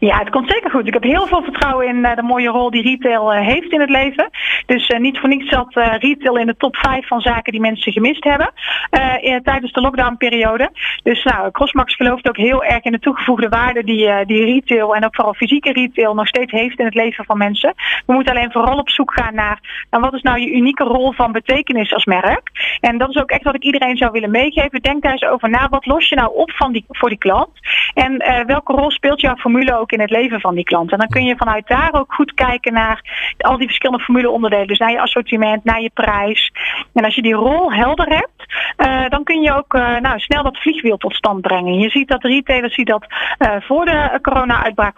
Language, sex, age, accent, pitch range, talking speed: Dutch, female, 30-49, Dutch, 230-275 Hz, 240 wpm